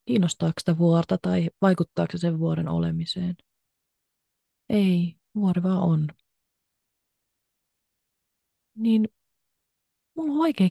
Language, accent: Finnish, native